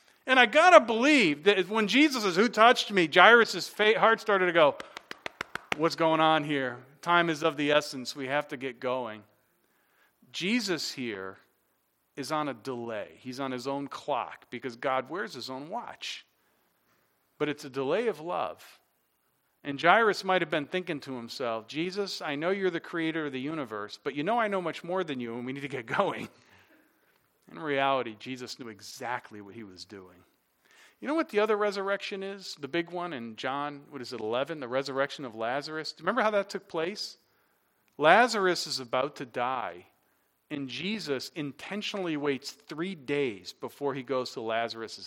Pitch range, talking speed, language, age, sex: 130-185 Hz, 185 wpm, English, 40-59, male